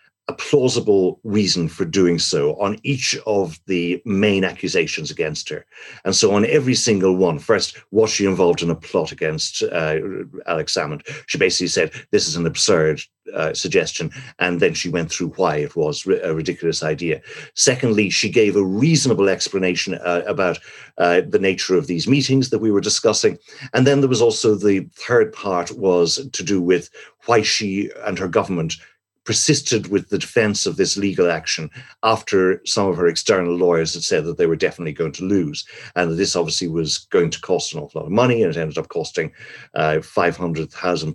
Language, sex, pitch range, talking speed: English, male, 85-115 Hz, 185 wpm